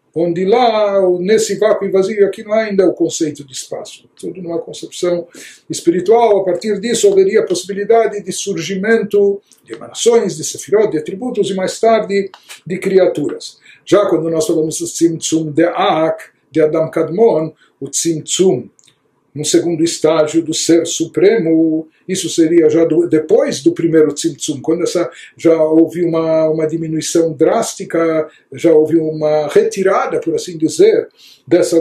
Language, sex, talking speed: Portuguese, male, 150 wpm